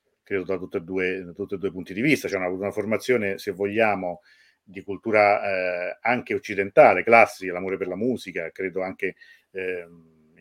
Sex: male